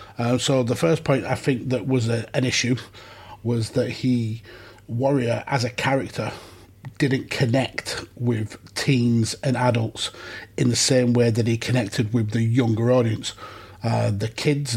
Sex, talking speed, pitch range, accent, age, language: male, 160 wpm, 115-130 Hz, British, 30-49, English